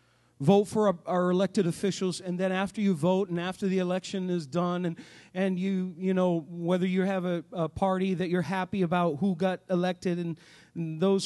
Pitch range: 180-215 Hz